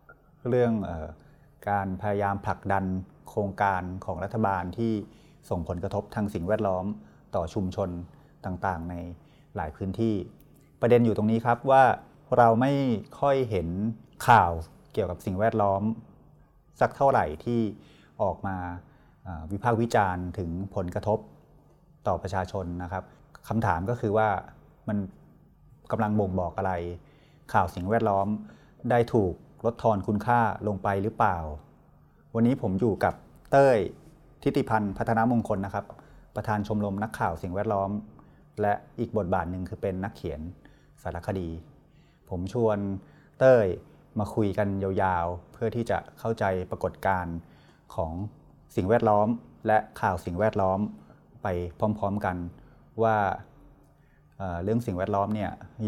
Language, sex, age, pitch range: Thai, male, 30-49, 95-115 Hz